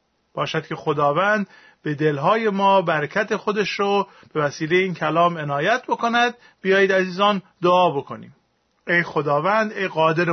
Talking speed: 135 wpm